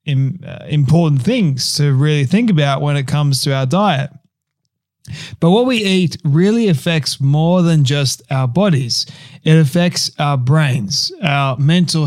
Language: English